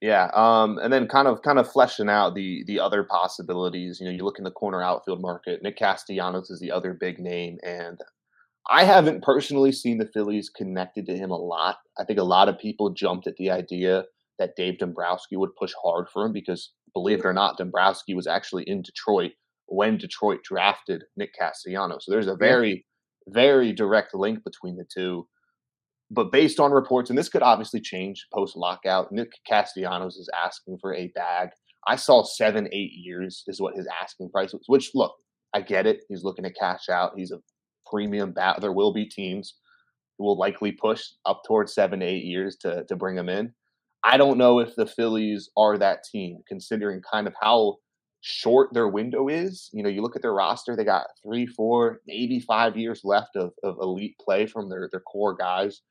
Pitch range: 90-115 Hz